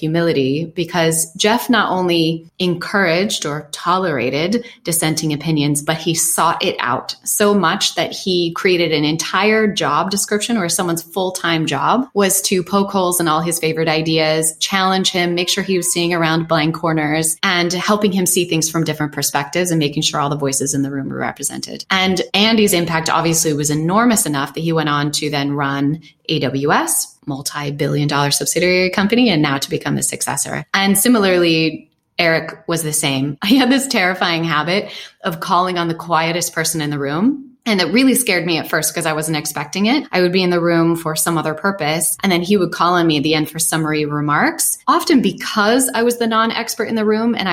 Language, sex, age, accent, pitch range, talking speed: English, female, 20-39, American, 155-190 Hz, 195 wpm